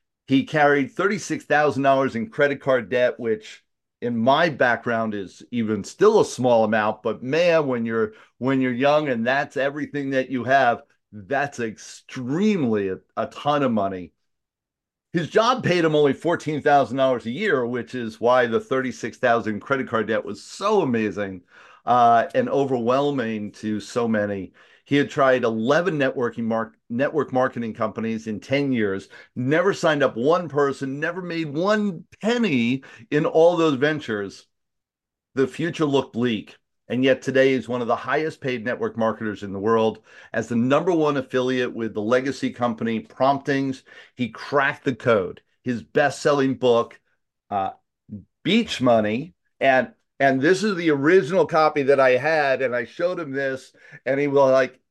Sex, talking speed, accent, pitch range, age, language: male, 165 wpm, American, 115-150 Hz, 40-59, English